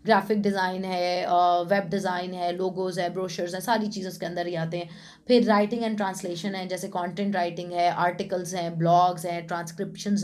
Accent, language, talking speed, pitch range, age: Indian, English, 180 wpm, 175-215 Hz, 20-39